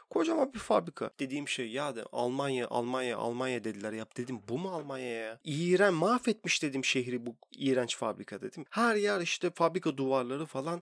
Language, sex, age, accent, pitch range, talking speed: Turkish, male, 40-59, native, 125-170 Hz, 170 wpm